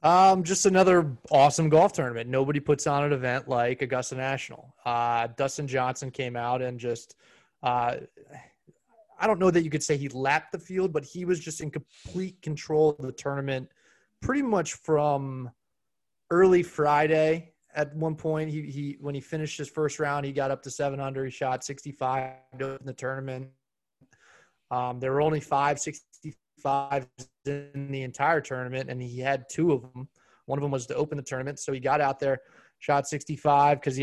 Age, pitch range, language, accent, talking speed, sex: 20-39, 130-155 Hz, English, American, 185 wpm, male